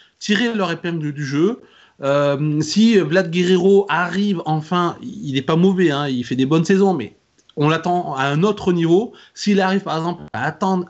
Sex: male